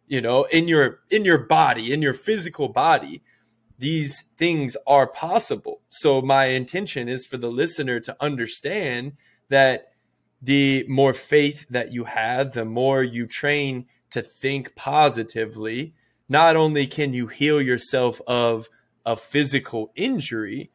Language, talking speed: English, 140 wpm